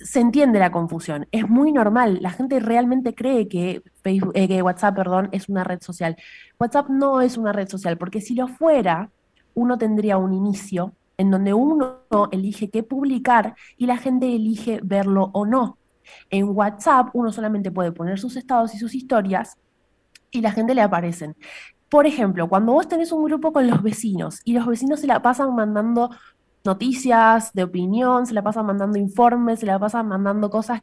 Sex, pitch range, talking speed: female, 195-250 Hz, 180 wpm